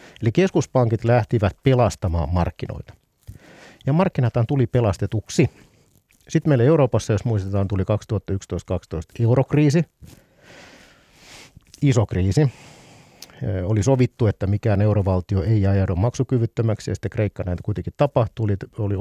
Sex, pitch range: male, 95-125 Hz